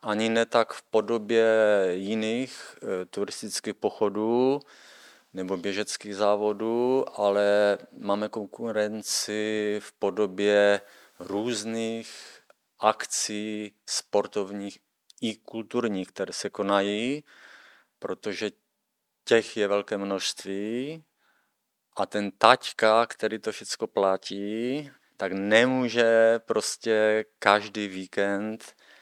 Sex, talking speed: male, 85 wpm